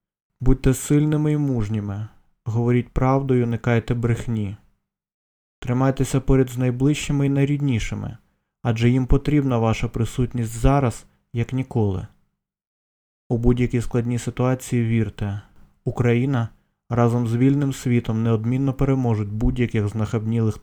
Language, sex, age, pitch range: Ukrainian, male, 20-39, 115-130 Hz